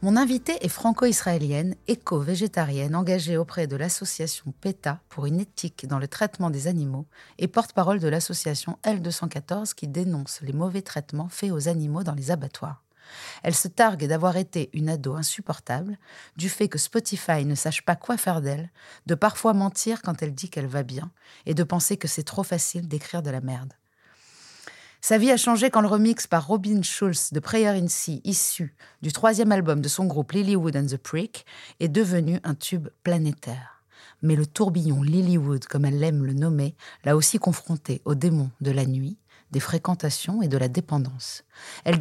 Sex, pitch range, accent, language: female, 150-185 Hz, French, French